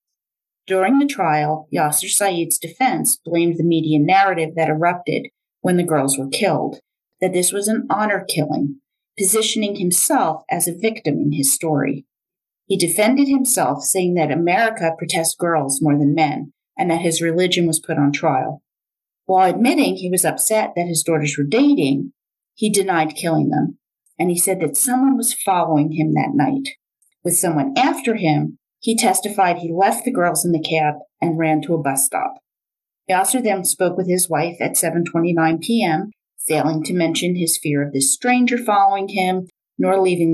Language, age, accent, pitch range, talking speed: English, 40-59, American, 155-210 Hz, 175 wpm